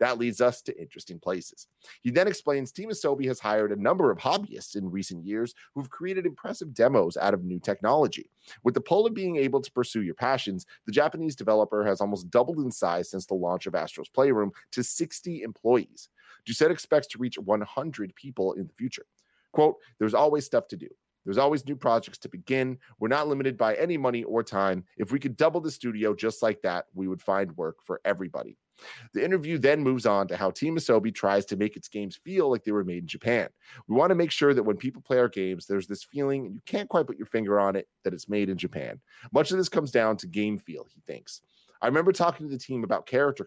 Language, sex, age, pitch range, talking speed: English, male, 30-49, 100-145 Hz, 230 wpm